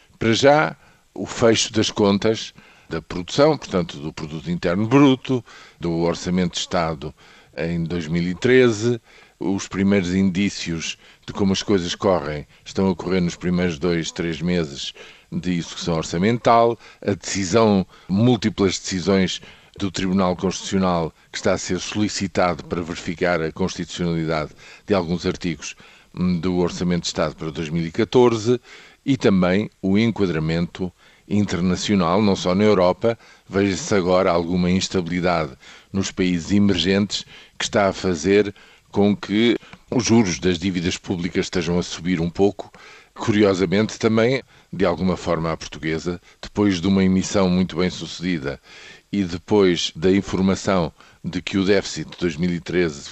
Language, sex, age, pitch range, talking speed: Portuguese, male, 50-69, 85-100 Hz, 135 wpm